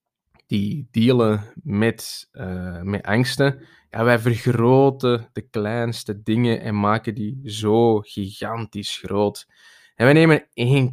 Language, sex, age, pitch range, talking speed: Dutch, male, 20-39, 105-130 Hz, 115 wpm